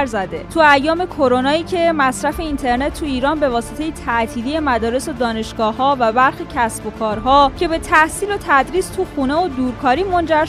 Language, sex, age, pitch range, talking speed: Persian, female, 20-39, 235-305 Hz, 185 wpm